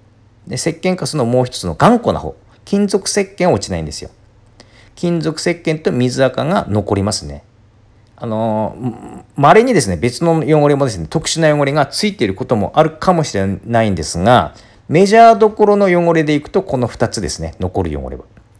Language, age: Japanese, 40-59